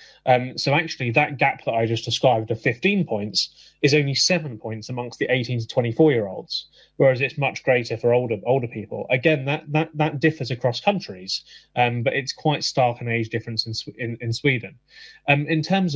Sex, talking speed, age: male, 200 wpm, 20-39